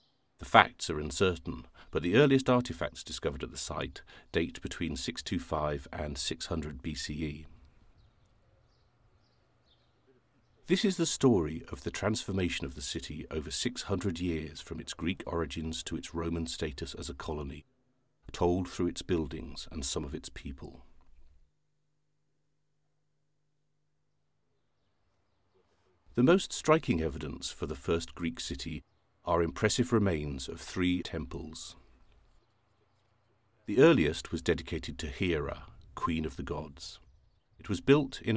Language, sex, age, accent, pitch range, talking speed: English, male, 50-69, British, 80-105 Hz, 125 wpm